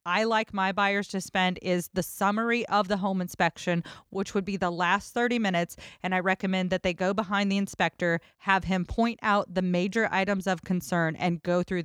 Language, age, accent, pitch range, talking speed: English, 30-49, American, 175-215 Hz, 210 wpm